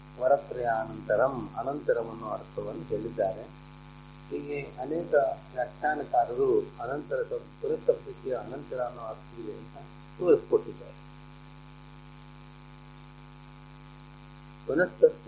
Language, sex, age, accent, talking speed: Kannada, male, 40-59, native, 65 wpm